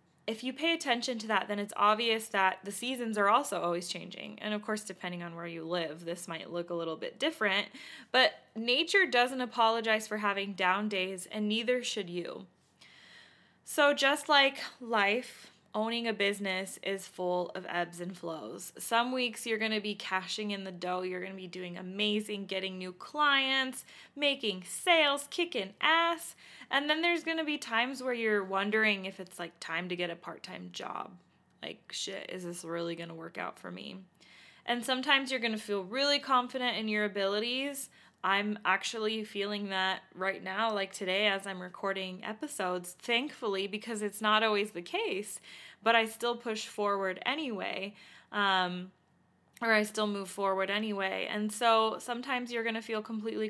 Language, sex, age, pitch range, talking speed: English, female, 20-39, 190-235 Hz, 180 wpm